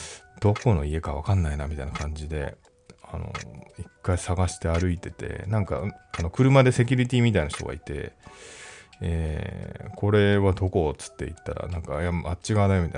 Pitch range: 85-105 Hz